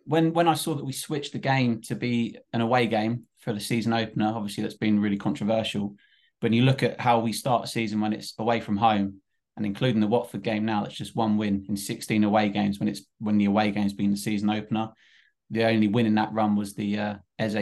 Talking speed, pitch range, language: 240 wpm, 105-120 Hz, English